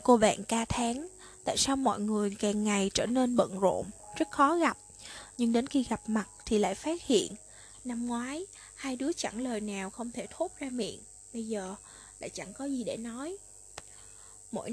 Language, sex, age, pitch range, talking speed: Vietnamese, female, 20-39, 210-270 Hz, 190 wpm